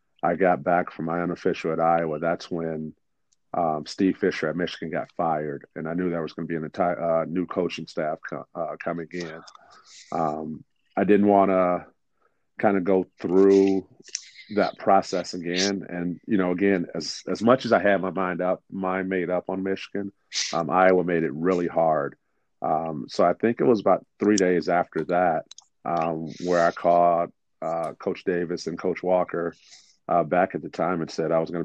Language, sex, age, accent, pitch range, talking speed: English, male, 40-59, American, 80-95 Hz, 190 wpm